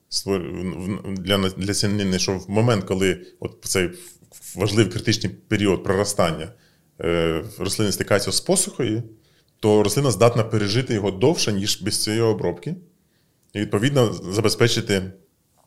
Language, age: Ukrainian, 30-49